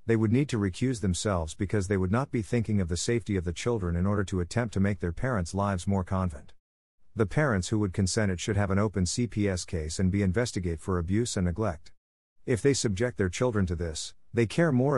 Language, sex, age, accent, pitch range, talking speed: English, male, 50-69, American, 90-115 Hz, 230 wpm